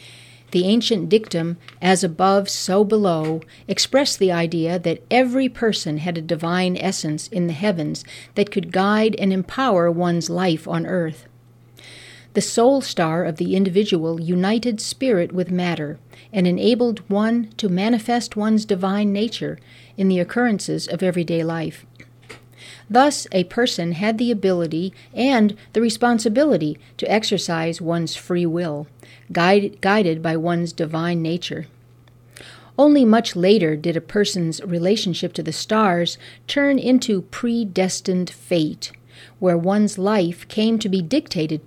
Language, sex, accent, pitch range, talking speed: English, female, American, 160-210 Hz, 135 wpm